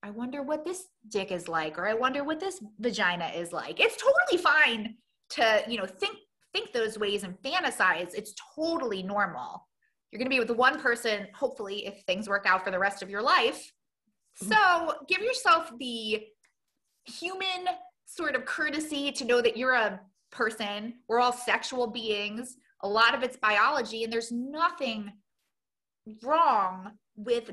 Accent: American